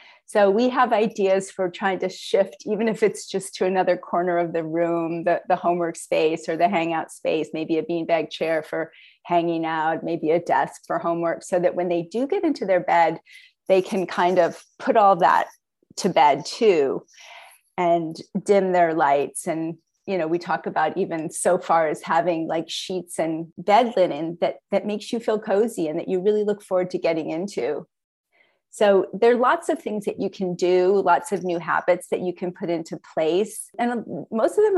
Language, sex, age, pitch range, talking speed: English, female, 30-49, 170-205 Hz, 200 wpm